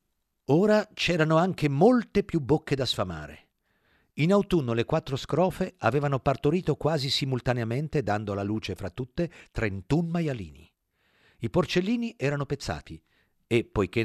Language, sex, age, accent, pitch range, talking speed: Italian, male, 50-69, native, 100-150 Hz, 130 wpm